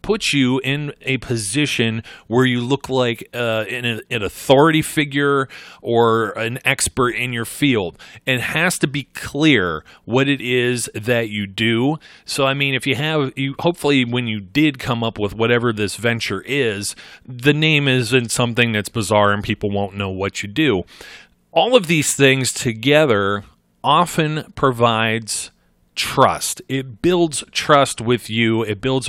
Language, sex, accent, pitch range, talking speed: English, male, American, 110-135 Hz, 160 wpm